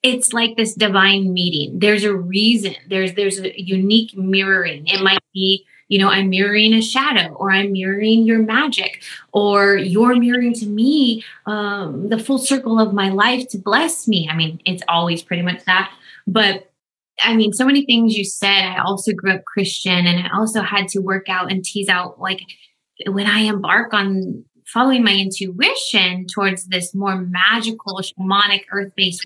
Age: 20-39